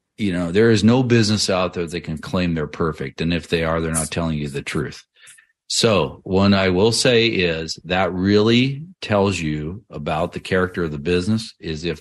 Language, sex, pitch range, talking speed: English, male, 80-105 Hz, 205 wpm